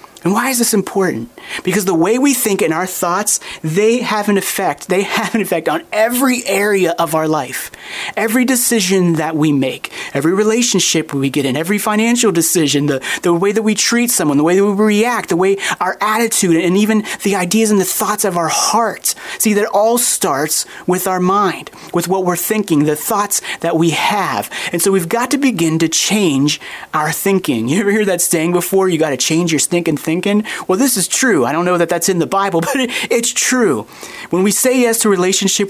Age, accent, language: 30-49, American, English